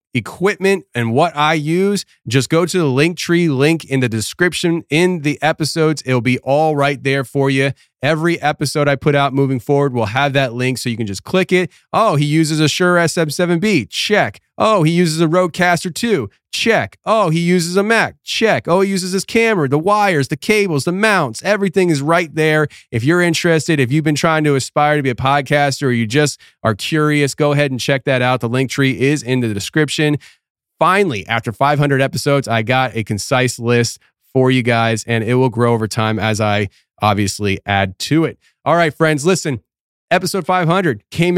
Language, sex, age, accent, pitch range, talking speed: English, male, 30-49, American, 130-165 Hz, 200 wpm